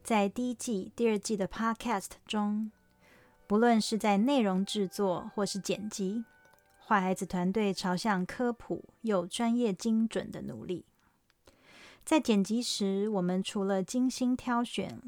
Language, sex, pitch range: Chinese, female, 190-240 Hz